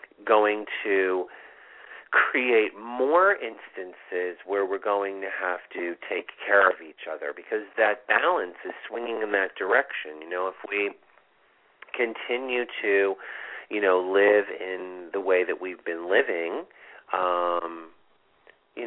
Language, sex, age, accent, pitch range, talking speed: English, male, 40-59, American, 90-100 Hz, 135 wpm